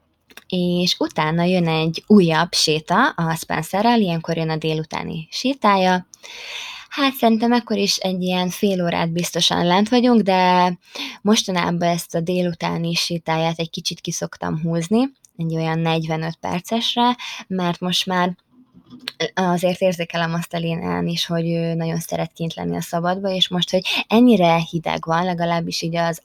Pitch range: 165-195 Hz